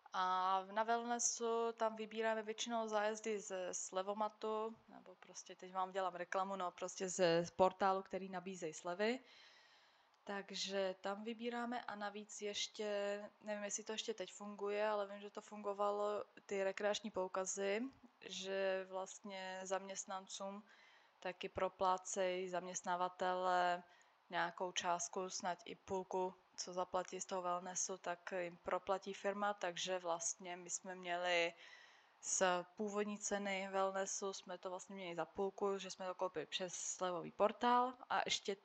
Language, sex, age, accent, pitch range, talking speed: Czech, female, 20-39, native, 180-205 Hz, 135 wpm